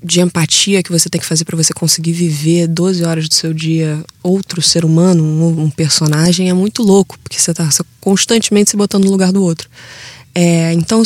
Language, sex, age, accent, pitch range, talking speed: Portuguese, female, 20-39, Brazilian, 165-205 Hz, 195 wpm